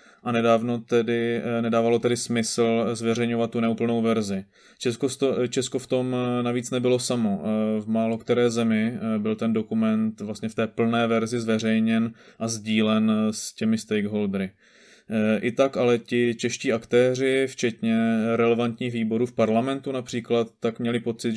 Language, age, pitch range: Czech, 20-39, 115-125 Hz